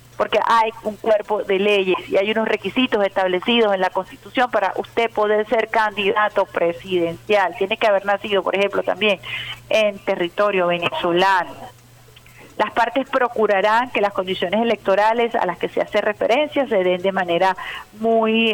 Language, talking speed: Spanish, 155 wpm